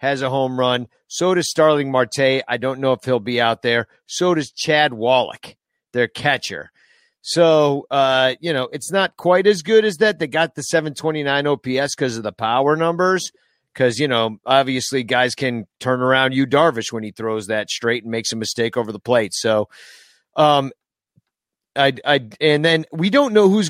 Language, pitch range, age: English, 125-180 Hz, 40-59